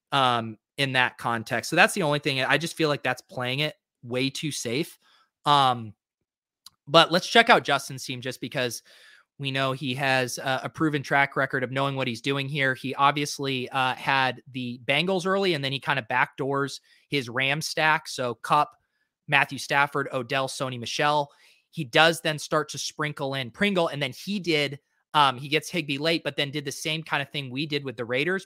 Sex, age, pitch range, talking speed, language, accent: male, 30-49, 130-155 Hz, 200 wpm, English, American